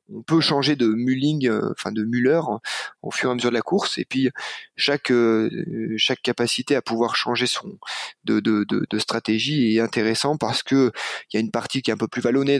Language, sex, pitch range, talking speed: French, male, 110-135 Hz, 225 wpm